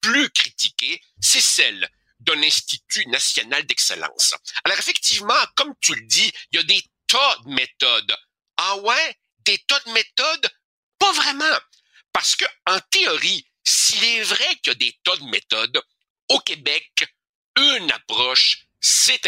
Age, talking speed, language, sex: 60-79, 150 wpm, French, male